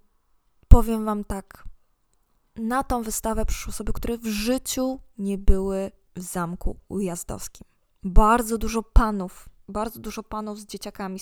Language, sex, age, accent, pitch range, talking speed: Polish, female, 20-39, native, 215-245 Hz, 130 wpm